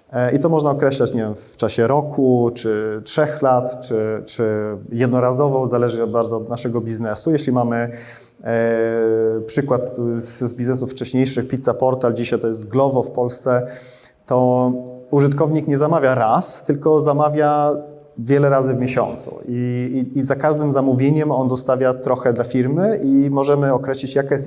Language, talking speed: Polish, 155 wpm